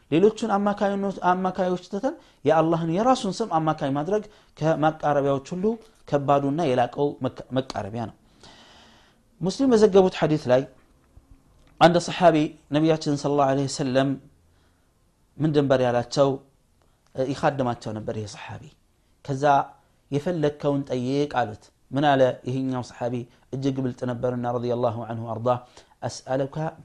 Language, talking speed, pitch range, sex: Amharic, 105 wpm, 125-180 Hz, male